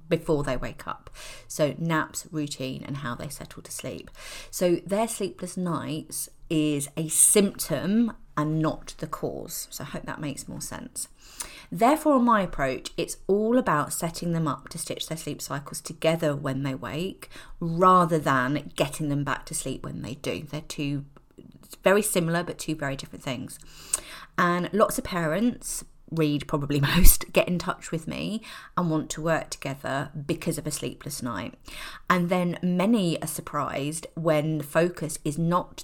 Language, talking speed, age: English, 165 wpm, 30-49